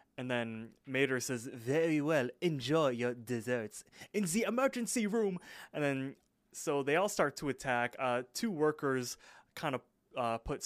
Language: English